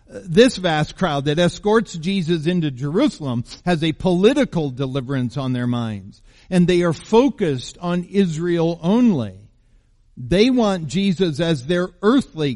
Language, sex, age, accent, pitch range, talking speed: English, male, 50-69, American, 115-165 Hz, 135 wpm